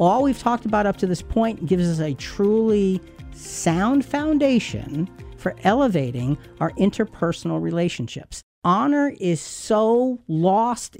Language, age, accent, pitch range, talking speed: English, 50-69, American, 135-195 Hz, 125 wpm